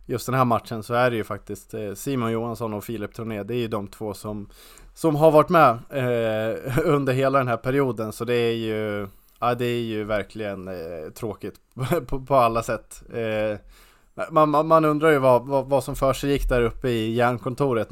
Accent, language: Norwegian, Swedish